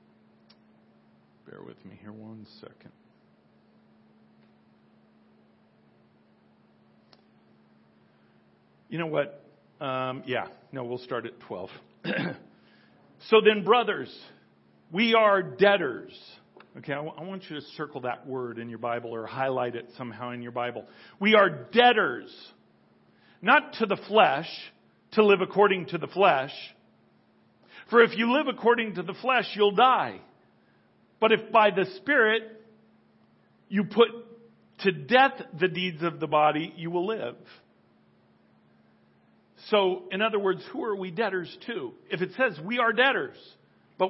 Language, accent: English, American